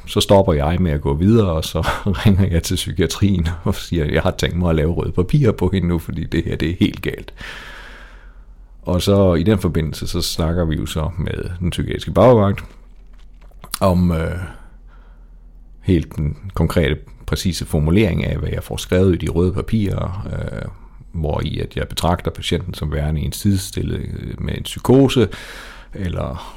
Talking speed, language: 180 wpm, Danish